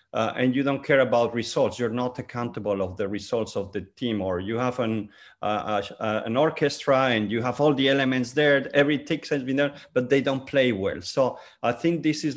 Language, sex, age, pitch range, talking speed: English, male, 50-69, 120-155 Hz, 225 wpm